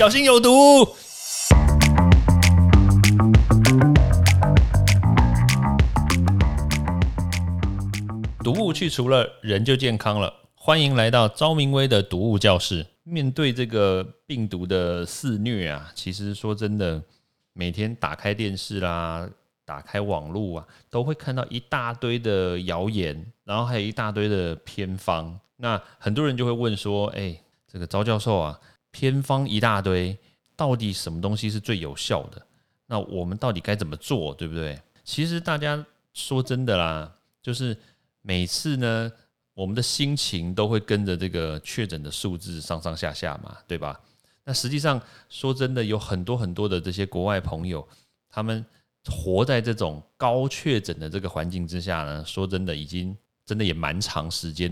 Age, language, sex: 30-49, Chinese, male